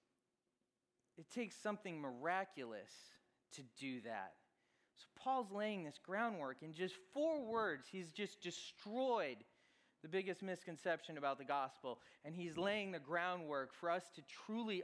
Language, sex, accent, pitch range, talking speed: English, male, American, 135-185 Hz, 140 wpm